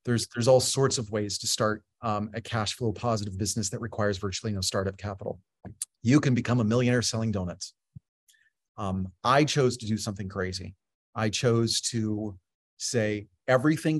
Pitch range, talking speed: 105-125 Hz, 165 wpm